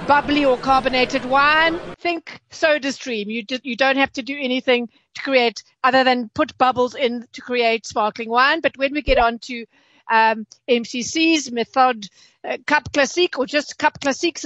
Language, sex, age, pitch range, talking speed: English, female, 50-69, 245-305 Hz, 175 wpm